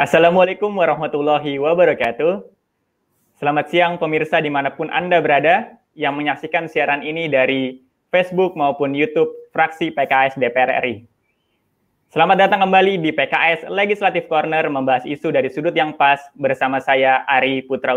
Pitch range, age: 145-180 Hz, 20-39